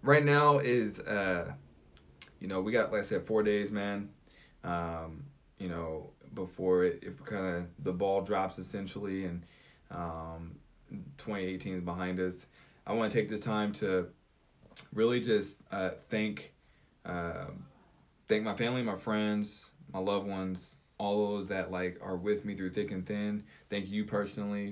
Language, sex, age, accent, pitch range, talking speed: English, male, 20-39, American, 90-110 Hz, 160 wpm